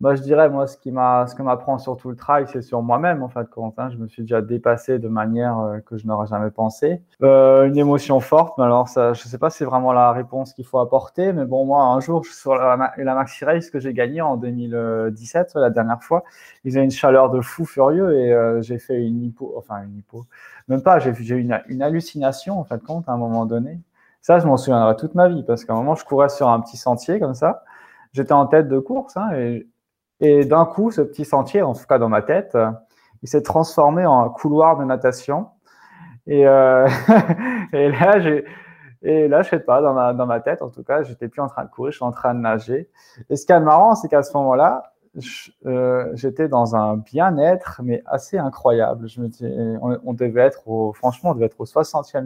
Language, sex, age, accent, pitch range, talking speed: French, male, 20-39, French, 120-150 Hz, 240 wpm